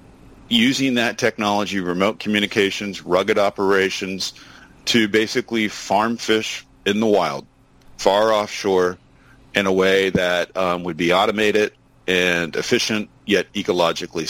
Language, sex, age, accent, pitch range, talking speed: English, male, 40-59, American, 95-110 Hz, 120 wpm